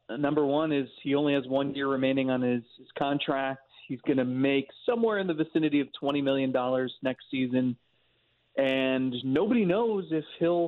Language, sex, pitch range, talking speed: English, male, 135-155 Hz, 175 wpm